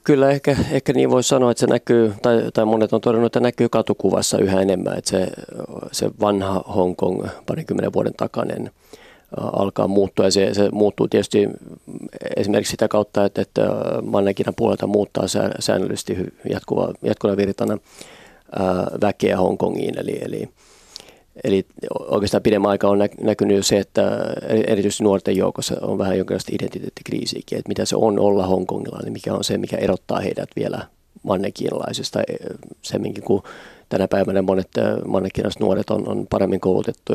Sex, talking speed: male, 150 wpm